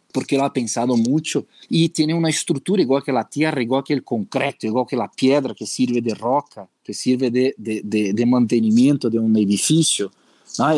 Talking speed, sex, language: 200 wpm, male, Spanish